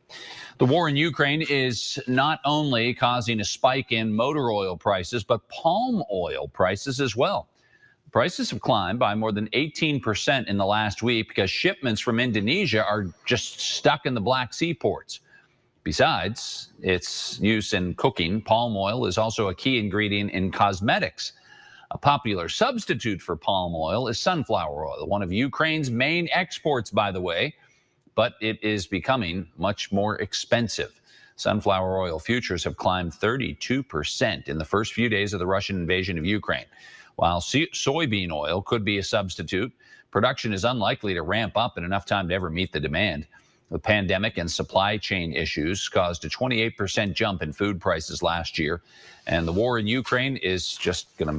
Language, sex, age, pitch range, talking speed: English, male, 40-59, 95-130 Hz, 165 wpm